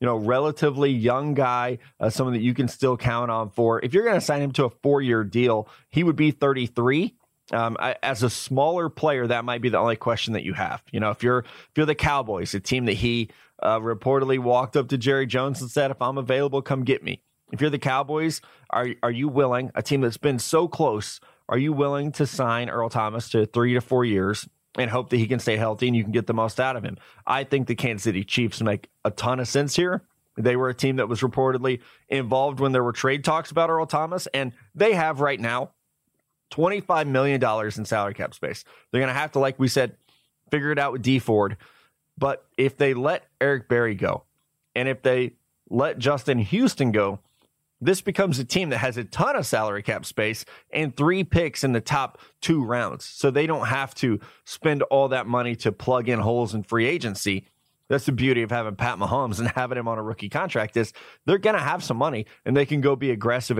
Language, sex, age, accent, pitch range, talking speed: English, male, 30-49, American, 115-140 Hz, 230 wpm